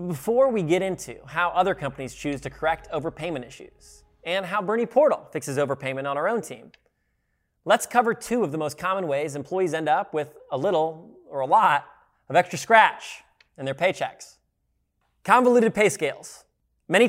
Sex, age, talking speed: male, 20-39, 170 wpm